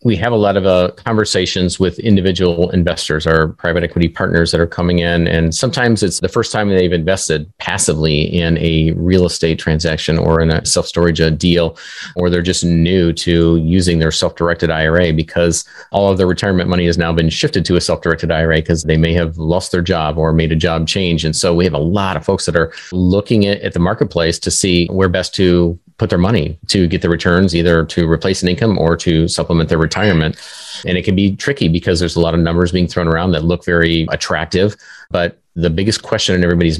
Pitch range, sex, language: 85-95 Hz, male, English